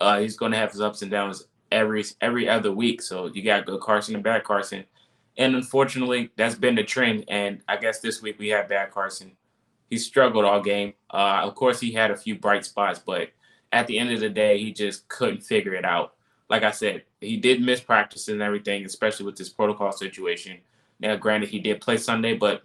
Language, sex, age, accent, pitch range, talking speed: English, male, 20-39, American, 105-120 Hz, 220 wpm